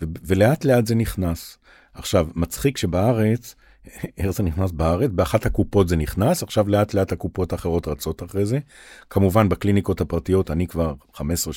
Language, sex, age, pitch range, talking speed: Hebrew, male, 50-69, 85-110 Hz, 150 wpm